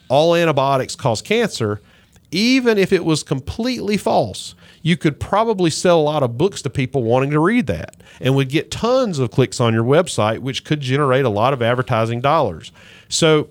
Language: English